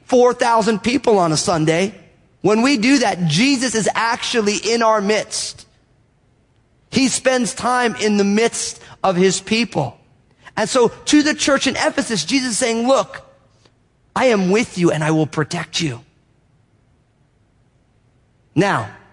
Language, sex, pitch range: English, male, 155-240 Hz